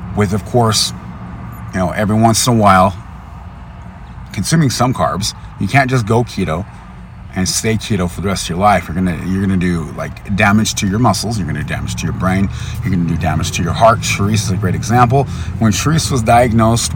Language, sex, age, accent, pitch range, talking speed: English, male, 30-49, American, 85-115 Hz, 210 wpm